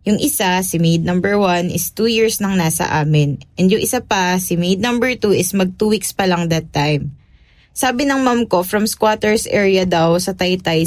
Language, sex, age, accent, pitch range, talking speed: English, female, 20-39, Filipino, 165-215 Hz, 210 wpm